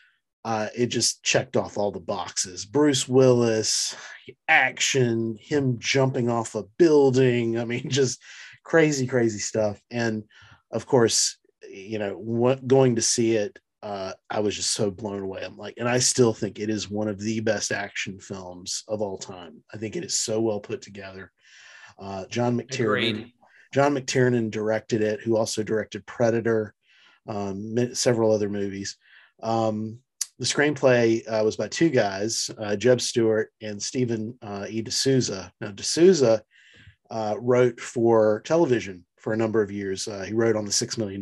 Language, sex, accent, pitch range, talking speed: English, male, American, 105-125 Hz, 165 wpm